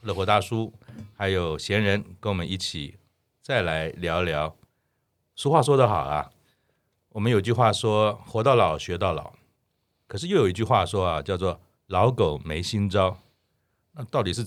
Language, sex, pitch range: Chinese, male, 85-110 Hz